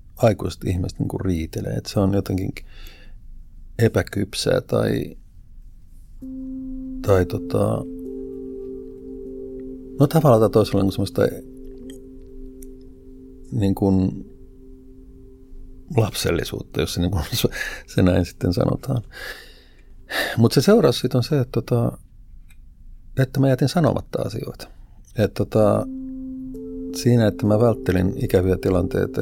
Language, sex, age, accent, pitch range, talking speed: Finnish, male, 50-69, native, 95-130 Hz, 95 wpm